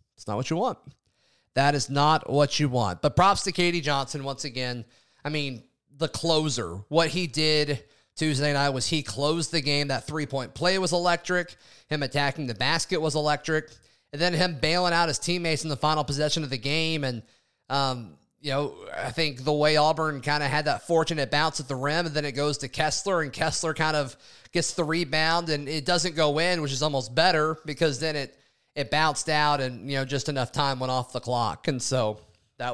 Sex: male